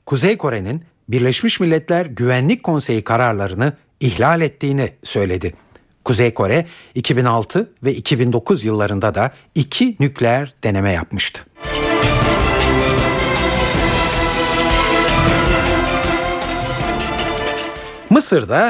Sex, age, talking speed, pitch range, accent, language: male, 60-79, 70 wpm, 115-160 Hz, native, Turkish